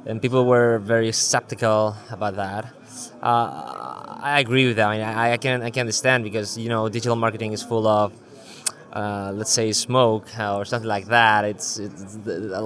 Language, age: English, 20-39